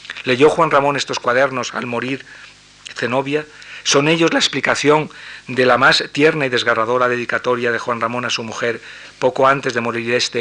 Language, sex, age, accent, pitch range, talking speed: Spanish, male, 40-59, Spanish, 115-135 Hz, 175 wpm